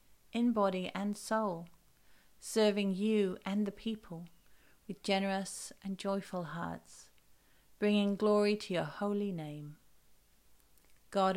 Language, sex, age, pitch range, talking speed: English, female, 40-59, 170-200 Hz, 110 wpm